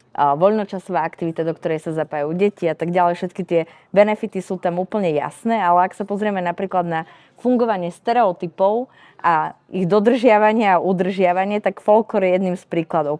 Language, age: Slovak, 20-39